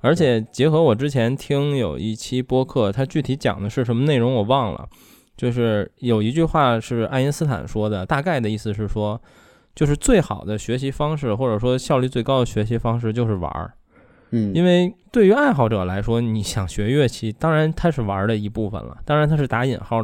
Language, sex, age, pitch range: Chinese, male, 20-39, 105-145 Hz